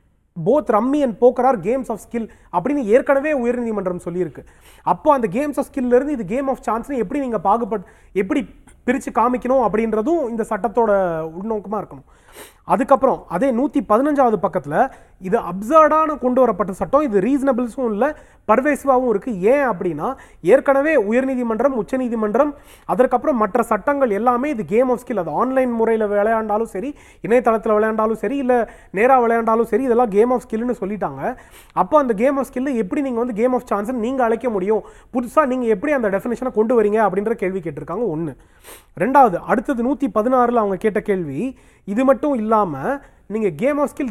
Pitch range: 210-265 Hz